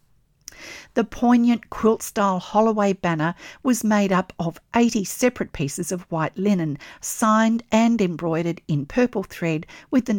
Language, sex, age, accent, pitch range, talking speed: English, female, 50-69, Australian, 165-215 Hz, 140 wpm